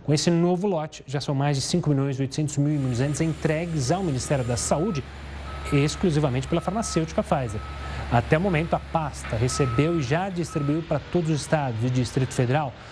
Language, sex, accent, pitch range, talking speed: Portuguese, male, Brazilian, 130-185 Hz, 170 wpm